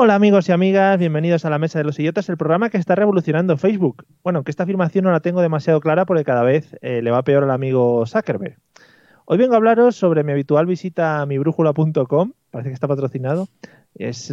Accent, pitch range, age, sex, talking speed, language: Spanish, 140-185 Hz, 30-49, male, 215 wpm, Spanish